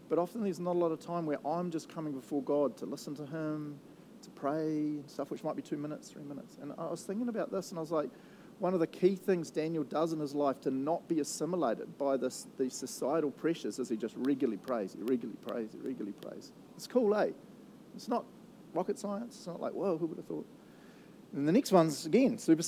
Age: 40-59